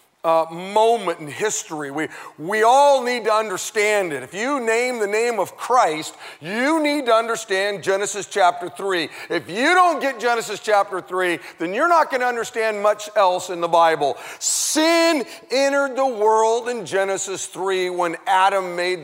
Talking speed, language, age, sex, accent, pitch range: 165 wpm, English, 40-59, male, American, 180-240 Hz